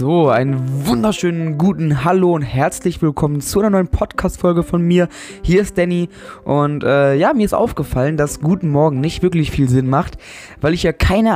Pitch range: 140-175 Hz